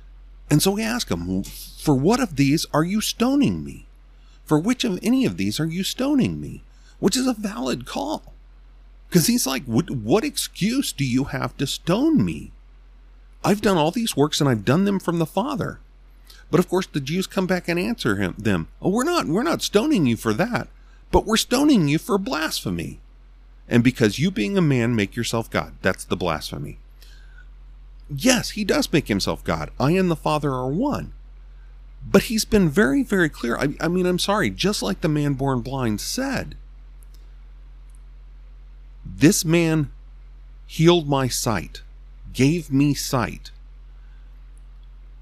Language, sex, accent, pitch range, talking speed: English, male, American, 120-190 Hz, 170 wpm